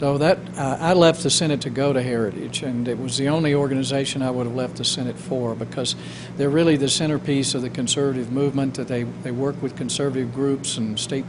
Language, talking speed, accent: English, 230 wpm, American